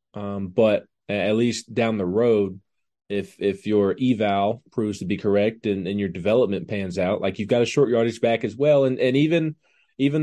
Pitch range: 105-125 Hz